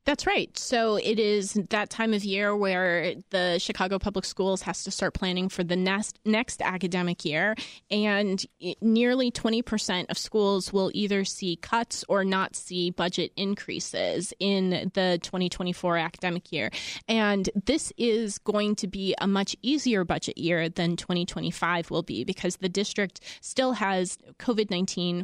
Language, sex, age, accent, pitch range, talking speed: English, female, 20-39, American, 175-205 Hz, 165 wpm